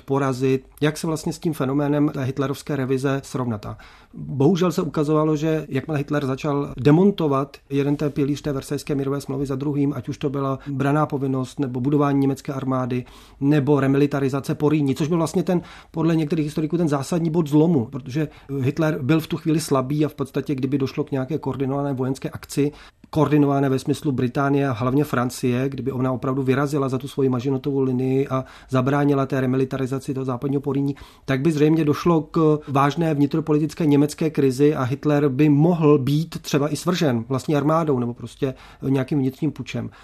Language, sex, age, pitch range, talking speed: Czech, male, 40-59, 135-155 Hz, 170 wpm